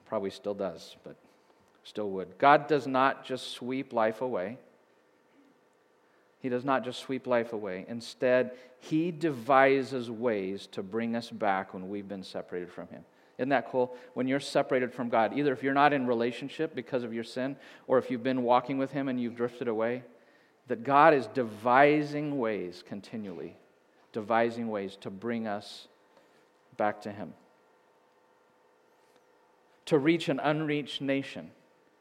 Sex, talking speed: male, 155 wpm